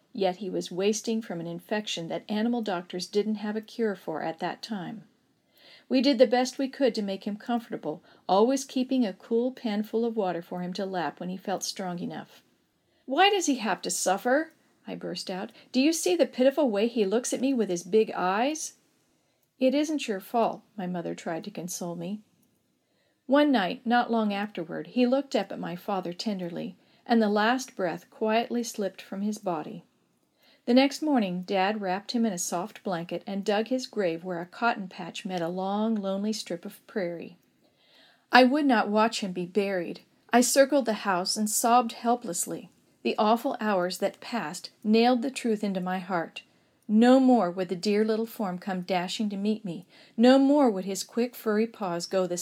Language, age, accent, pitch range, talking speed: English, 50-69, American, 185-245 Hz, 195 wpm